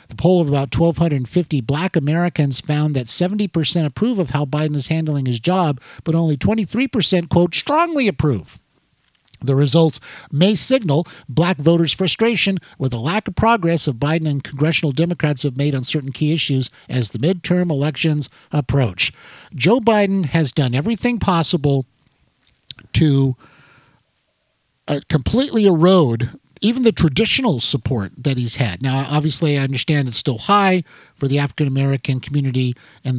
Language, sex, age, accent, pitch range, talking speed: English, male, 50-69, American, 135-175 Hz, 150 wpm